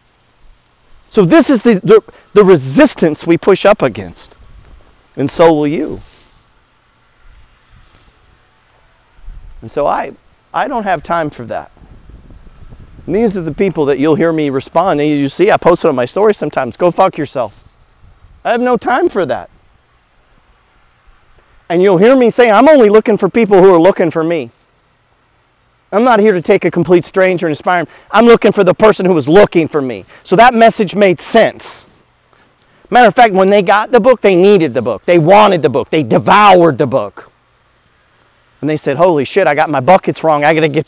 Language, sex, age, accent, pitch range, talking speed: English, male, 40-59, American, 145-200 Hz, 190 wpm